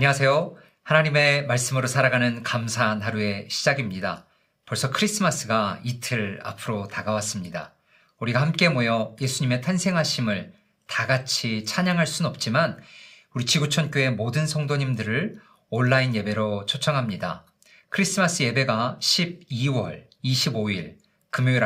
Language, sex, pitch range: Korean, male, 115-150 Hz